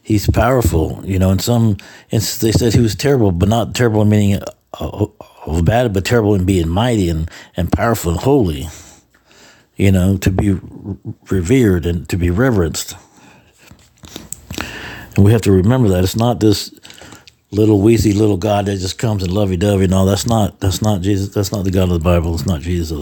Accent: American